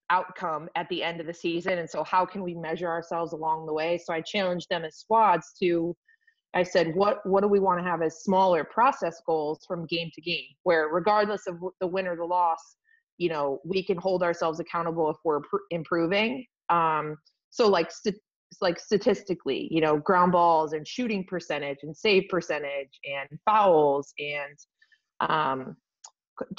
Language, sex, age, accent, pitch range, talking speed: English, female, 30-49, American, 165-195 Hz, 185 wpm